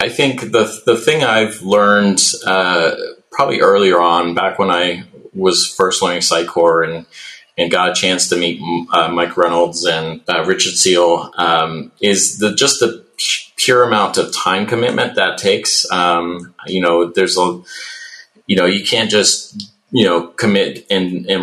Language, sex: English, male